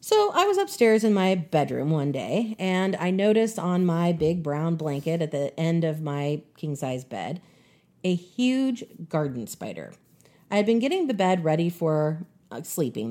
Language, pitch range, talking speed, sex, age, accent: English, 160-235 Hz, 175 wpm, female, 40-59, American